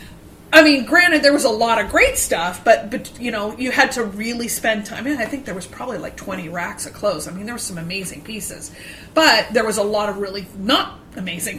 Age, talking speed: 30-49, 250 wpm